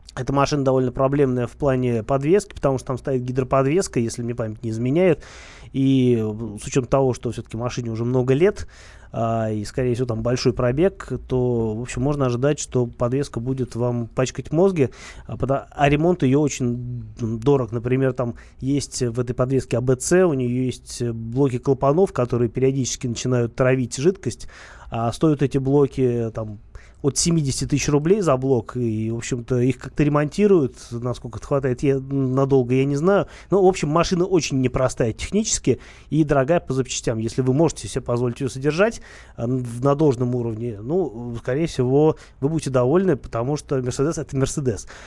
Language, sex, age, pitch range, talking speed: Russian, male, 20-39, 120-140 Hz, 170 wpm